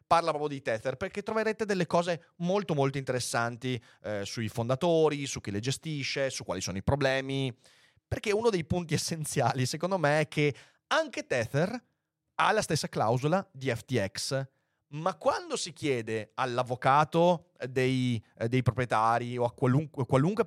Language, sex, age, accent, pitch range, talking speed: Italian, male, 30-49, native, 125-170 Hz, 150 wpm